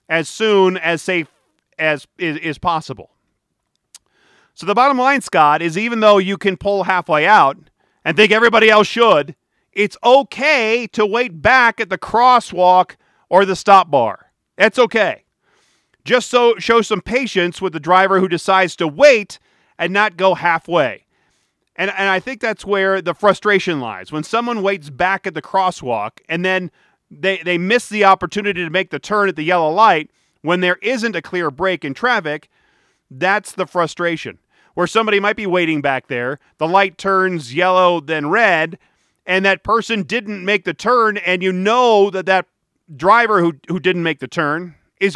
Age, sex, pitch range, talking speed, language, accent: 40-59, male, 170-220 Hz, 175 wpm, English, American